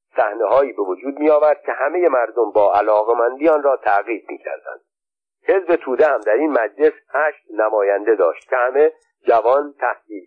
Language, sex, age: Persian, male, 50-69